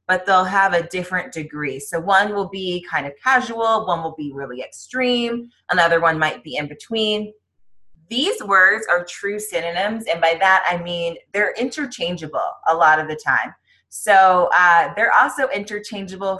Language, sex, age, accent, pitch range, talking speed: English, female, 20-39, American, 150-195 Hz, 170 wpm